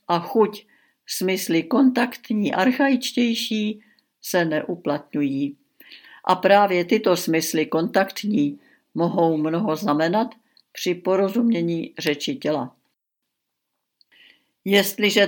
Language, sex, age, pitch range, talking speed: Czech, female, 70-89, 165-220 Hz, 80 wpm